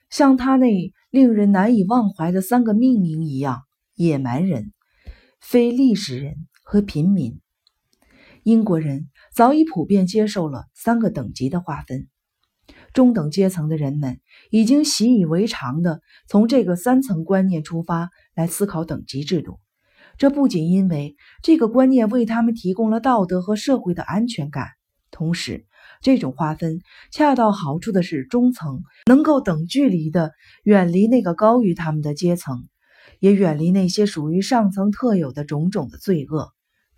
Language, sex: Chinese, female